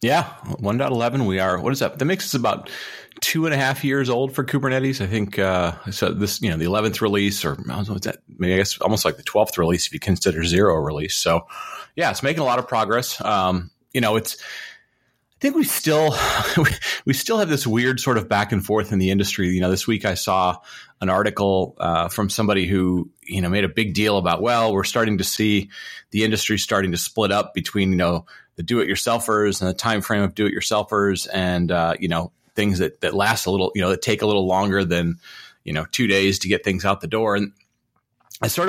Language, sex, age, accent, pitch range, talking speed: English, male, 30-49, American, 95-115 Hz, 230 wpm